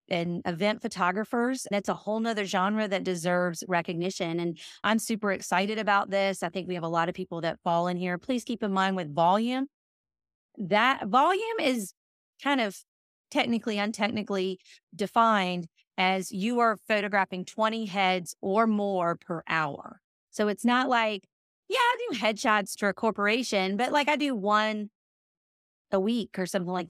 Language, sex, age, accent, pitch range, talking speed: English, female, 30-49, American, 180-230 Hz, 165 wpm